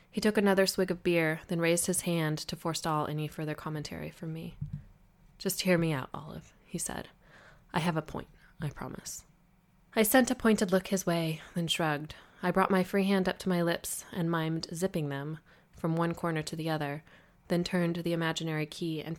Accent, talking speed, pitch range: American, 200 wpm, 150-175 Hz